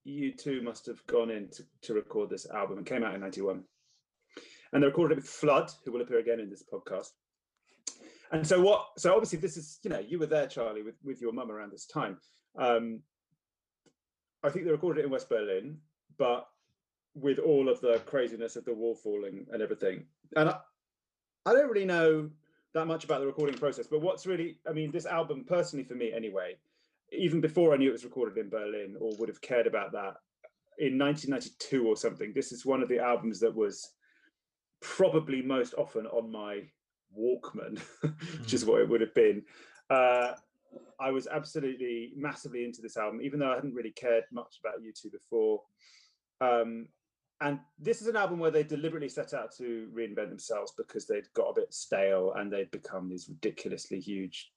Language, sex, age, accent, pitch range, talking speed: English, male, 30-49, British, 120-190 Hz, 195 wpm